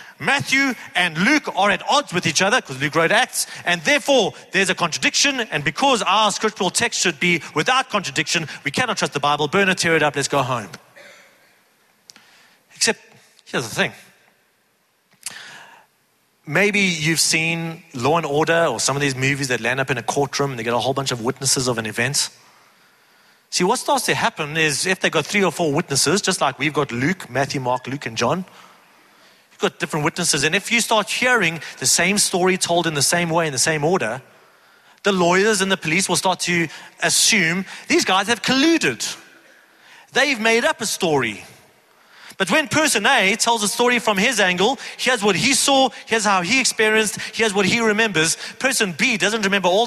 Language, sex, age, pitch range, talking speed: English, male, 40-59, 165-230 Hz, 195 wpm